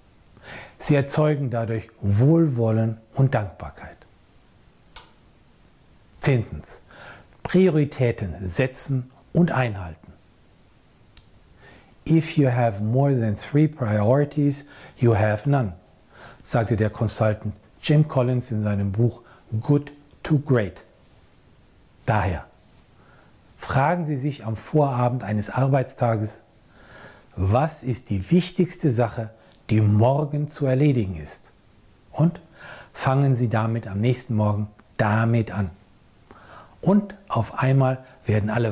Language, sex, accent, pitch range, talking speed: German, male, German, 105-140 Hz, 100 wpm